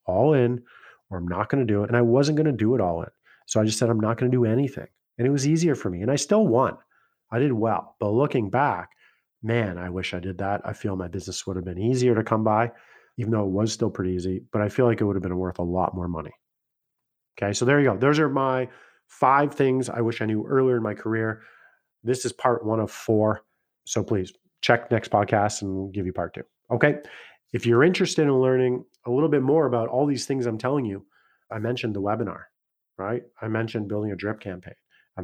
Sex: male